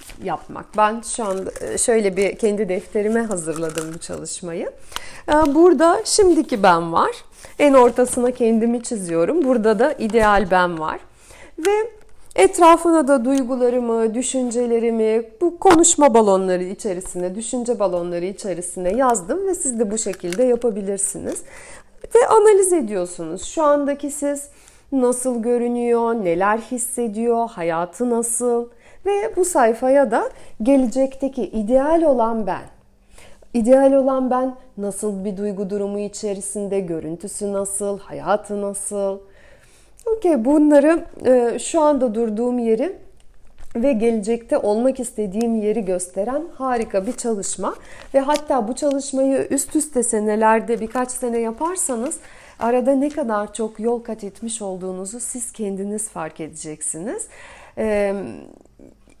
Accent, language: native, Turkish